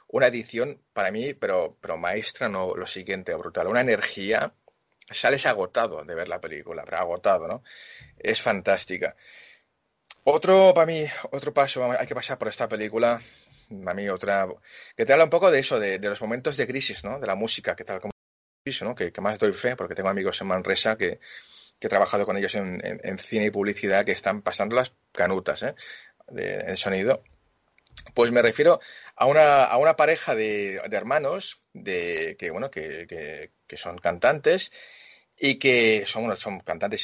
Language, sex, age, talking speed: Spanish, male, 30-49, 180 wpm